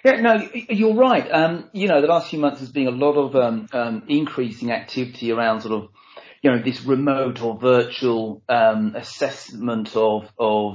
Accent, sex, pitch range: British, male, 110-130 Hz